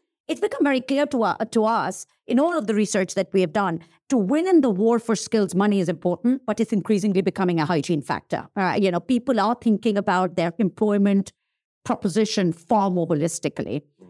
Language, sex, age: English, female, 50-69